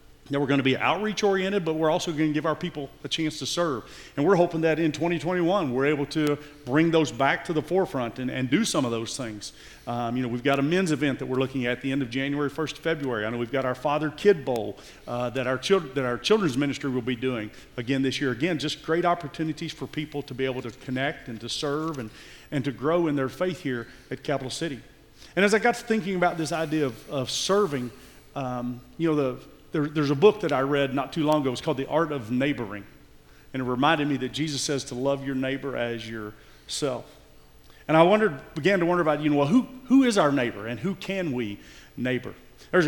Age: 40-59